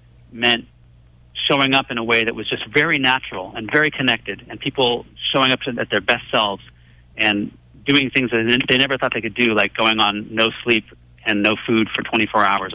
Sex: male